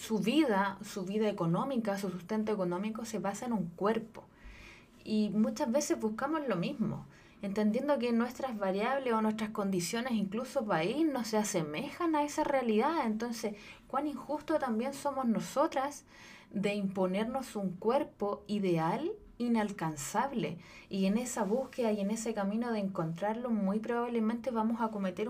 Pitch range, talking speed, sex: 200-265 Hz, 145 wpm, female